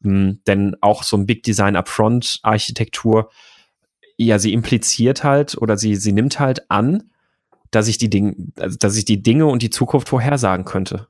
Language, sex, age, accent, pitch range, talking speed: German, male, 30-49, German, 100-115 Hz, 170 wpm